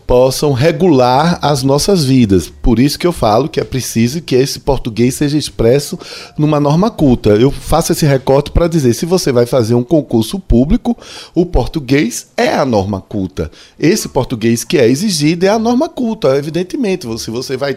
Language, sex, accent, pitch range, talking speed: Portuguese, male, Brazilian, 120-165 Hz, 180 wpm